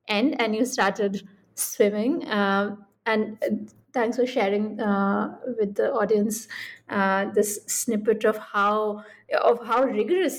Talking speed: 125 wpm